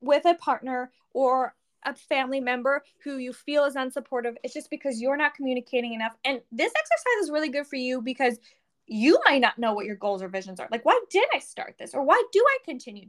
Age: 10-29